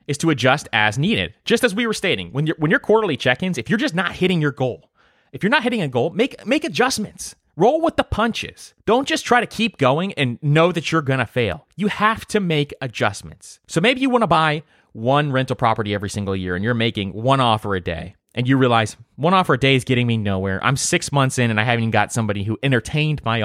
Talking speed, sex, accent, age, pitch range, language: 240 wpm, male, American, 30-49, 115-185 Hz, English